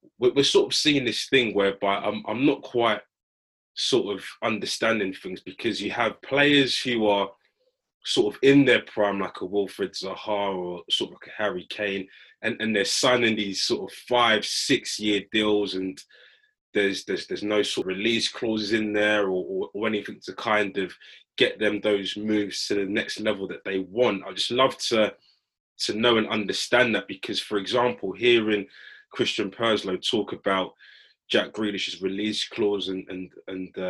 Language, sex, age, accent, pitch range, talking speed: English, male, 20-39, British, 95-115 Hz, 180 wpm